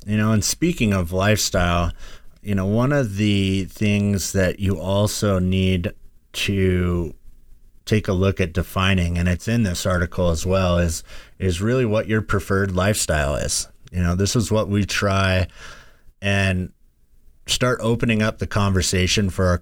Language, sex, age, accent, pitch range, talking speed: English, male, 30-49, American, 95-110 Hz, 160 wpm